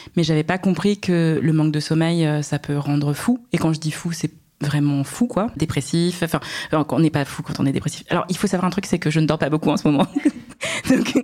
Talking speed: 260 wpm